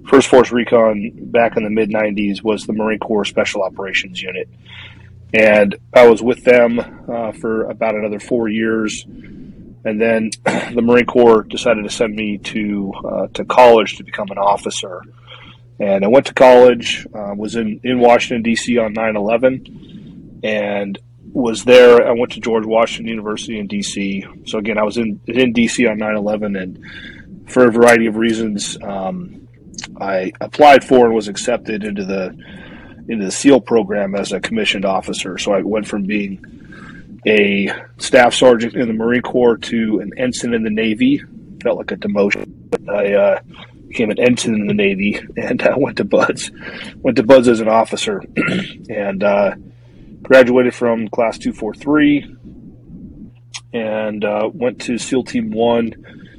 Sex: male